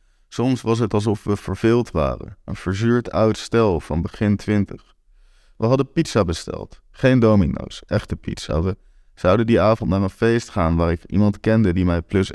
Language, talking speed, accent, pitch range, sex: Dutch, 180 wpm, Dutch, 90-120 Hz, male